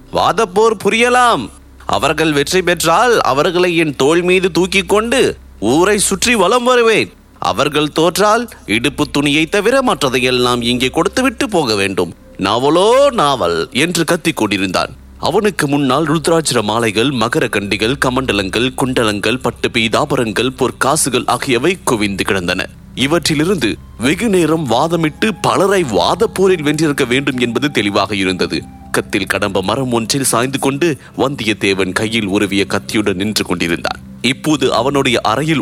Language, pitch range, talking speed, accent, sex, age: English, 110-170 Hz, 115 wpm, Indian, male, 30-49